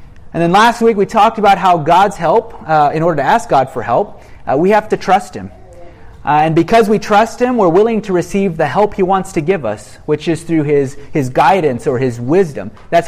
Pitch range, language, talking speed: 125-190 Hz, English, 235 wpm